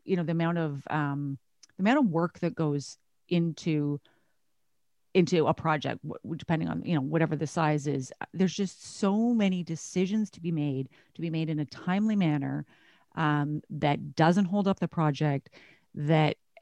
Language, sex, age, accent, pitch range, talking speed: English, female, 30-49, American, 150-175 Hz, 175 wpm